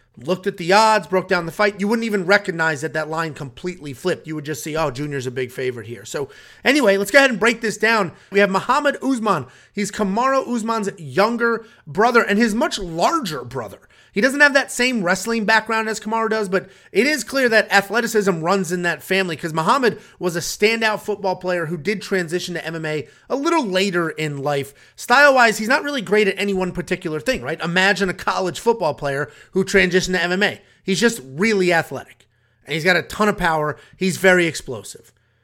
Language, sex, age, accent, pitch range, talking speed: English, male, 30-49, American, 170-225 Hz, 205 wpm